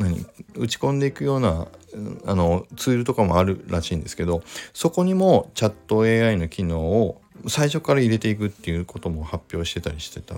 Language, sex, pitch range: Japanese, male, 90-140 Hz